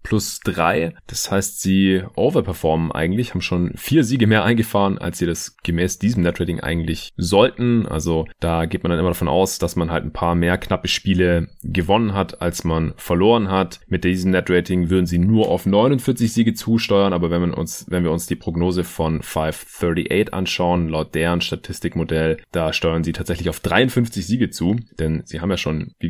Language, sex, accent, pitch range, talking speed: German, male, German, 85-100 Hz, 190 wpm